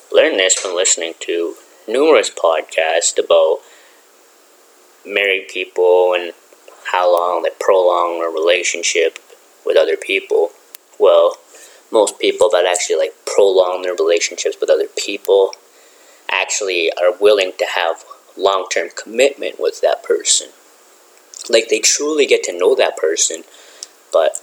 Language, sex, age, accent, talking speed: English, male, 20-39, American, 125 wpm